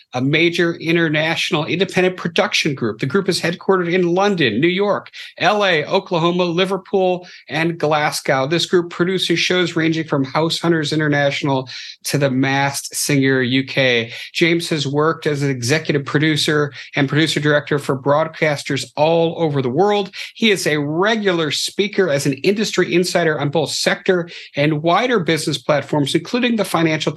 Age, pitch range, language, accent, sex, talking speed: 50-69, 140-175 Hz, English, American, male, 150 wpm